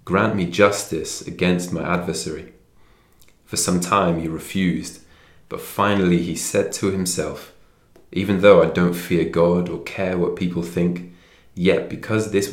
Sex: male